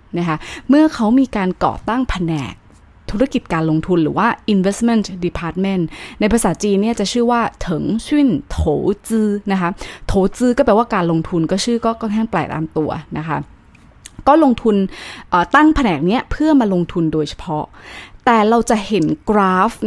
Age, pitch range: 20-39, 175-235 Hz